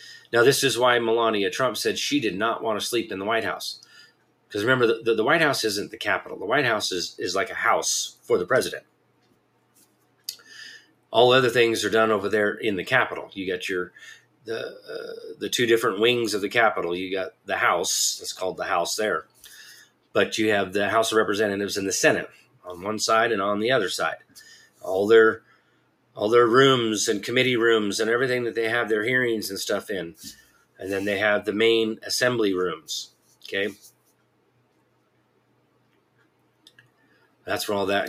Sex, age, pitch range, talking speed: male, 30-49, 105-125 Hz, 185 wpm